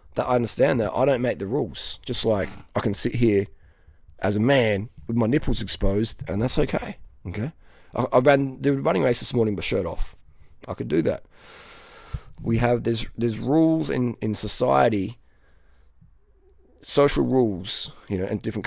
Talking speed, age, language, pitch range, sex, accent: 175 wpm, 20-39, English, 105-145 Hz, male, Australian